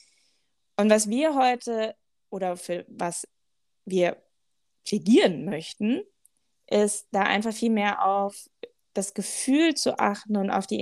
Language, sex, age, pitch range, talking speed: German, female, 20-39, 185-230 Hz, 130 wpm